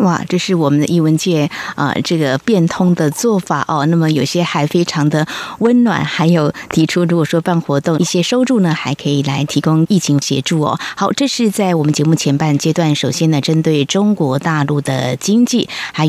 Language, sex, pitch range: Chinese, female, 145-185 Hz